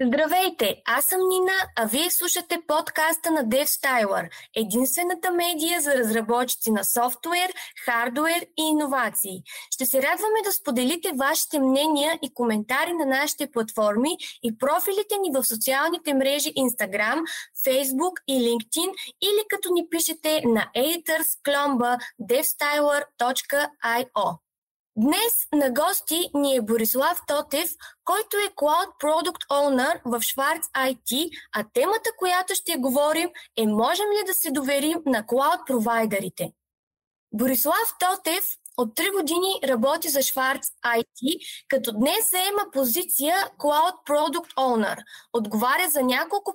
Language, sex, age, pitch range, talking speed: Bulgarian, female, 20-39, 250-345 Hz, 120 wpm